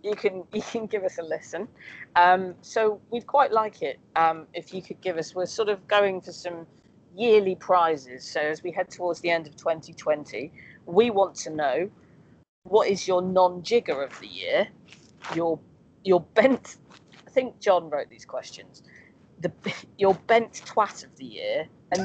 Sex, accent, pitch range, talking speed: female, British, 160-210 Hz, 175 wpm